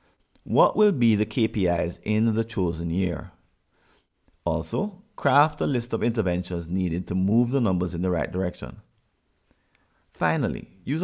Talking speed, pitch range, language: 140 wpm, 90-140 Hz, English